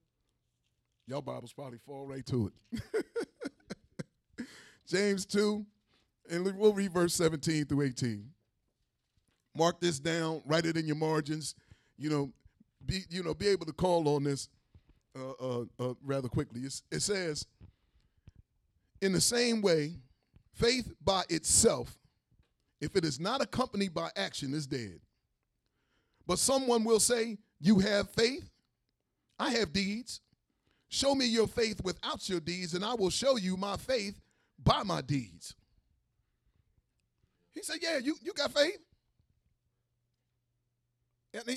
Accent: American